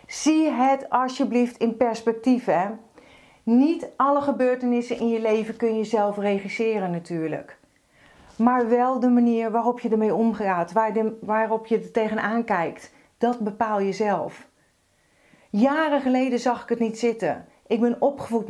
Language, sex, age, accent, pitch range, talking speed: Dutch, female, 40-59, Dutch, 220-255 Hz, 145 wpm